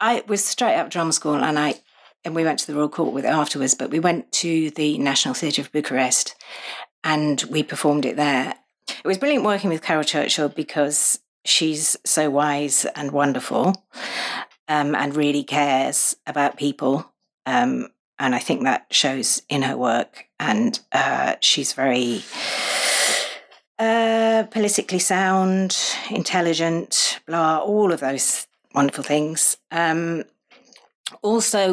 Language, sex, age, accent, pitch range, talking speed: English, female, 40-59, British, 145-170 Hz, 145 wpm